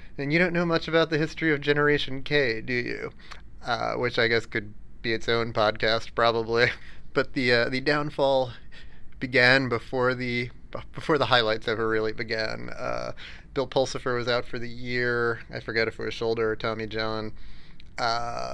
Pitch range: 115-135 Hz